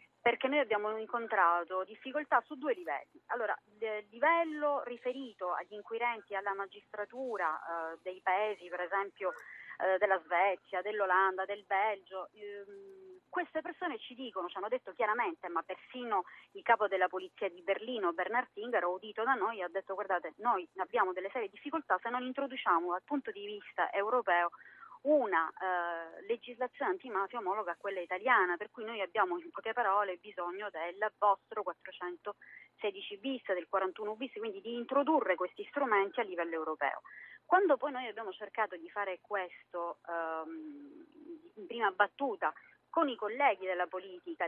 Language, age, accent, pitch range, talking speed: Italian, 30-49, native, 180-250 Hz, 155 wpm